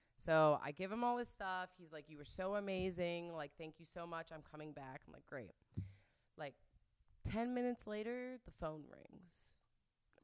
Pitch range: 135-205 Hz